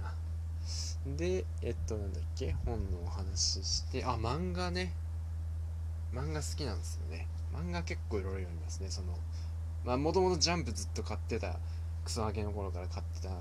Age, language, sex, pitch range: 20-39, Japanese, male, 85-90 Hz